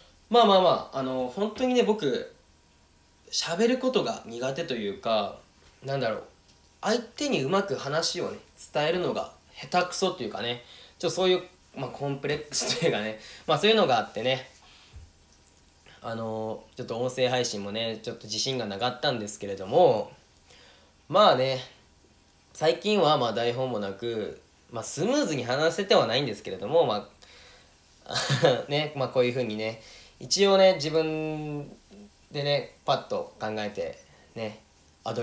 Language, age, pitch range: Japanese, 20-39, 110-180 Hz